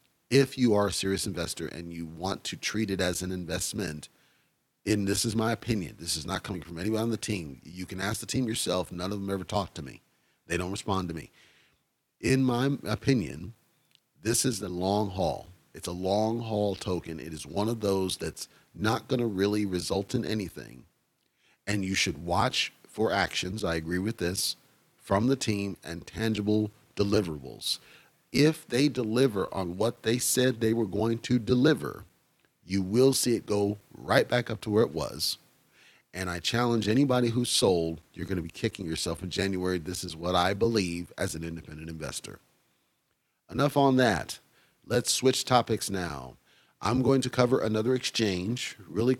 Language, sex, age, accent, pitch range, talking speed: English, male, 40-59, American, 90-120 Hz, 185 wpm